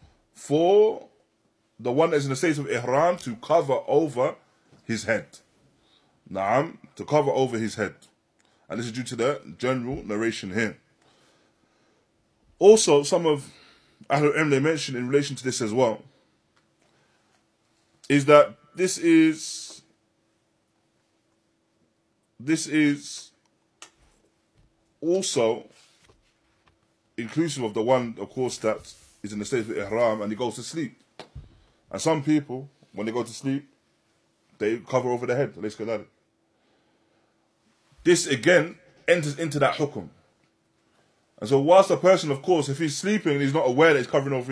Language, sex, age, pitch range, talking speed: English, male, 20-39, 115-155 Hz, 140 wpm